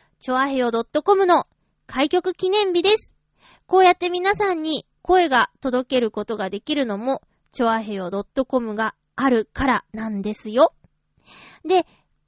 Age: 20-39